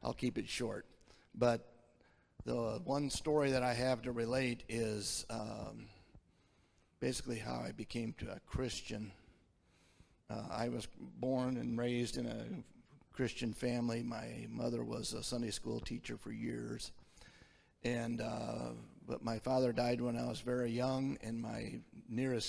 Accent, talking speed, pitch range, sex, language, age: American, 145 wpm, 110-125 Hz, male, English, 50-69